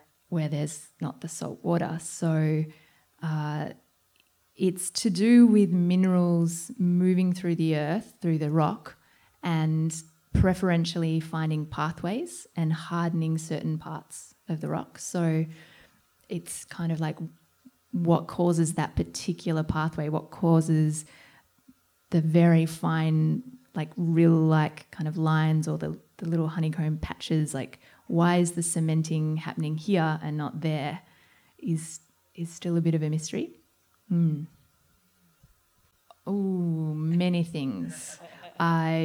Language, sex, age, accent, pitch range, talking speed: English, female, 20-39, Australian, 155-175 Hz, 125 wpm